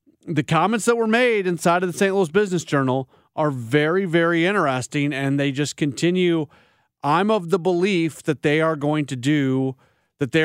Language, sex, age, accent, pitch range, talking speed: English, male, 30-49, American, 130-165 Hz, 185 wpm